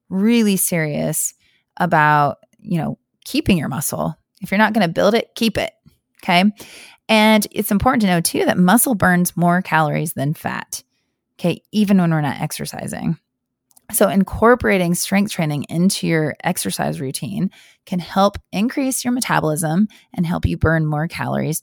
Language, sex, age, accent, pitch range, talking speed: English, female, 30-49, American, 150-200 Hz, 155 wpm